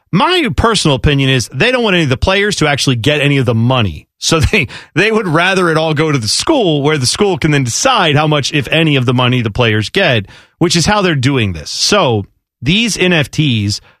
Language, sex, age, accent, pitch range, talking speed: English, male, 30-49, American, 125-155 Hz, 230 wpm